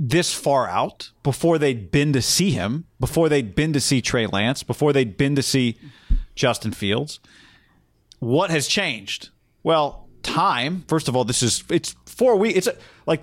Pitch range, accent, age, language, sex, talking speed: 115-150 Hz, American, 40-59, English, male, 170 wpm